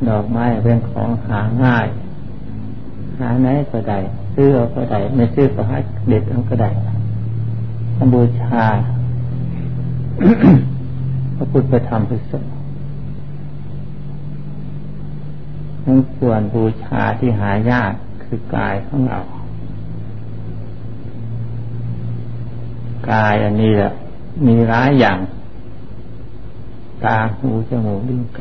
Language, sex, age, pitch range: Thai, male, 60-79, 105-125 Hz